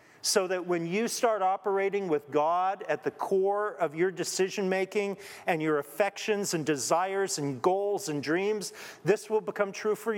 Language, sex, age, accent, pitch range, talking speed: English, male, 50-69, American, 155-200 Hz, 165 wpm